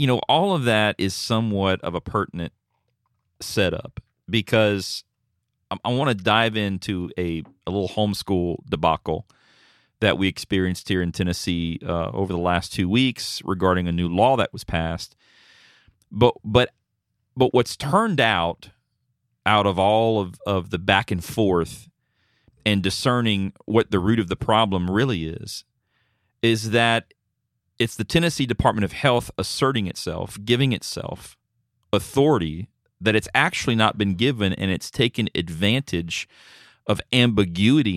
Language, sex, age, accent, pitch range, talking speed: English, male, 40-59, American, 95-120 Hz, 140 wpm